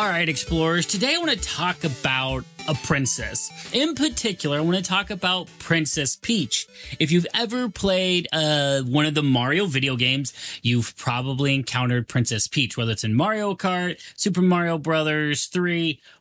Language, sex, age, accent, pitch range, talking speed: English, male, 30-49, American, 130-190 Hz, 165 wpm